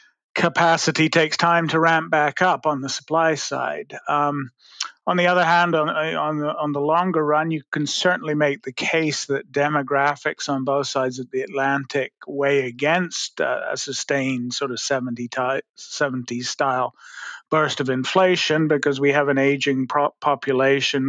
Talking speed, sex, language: 155 wpm, male, English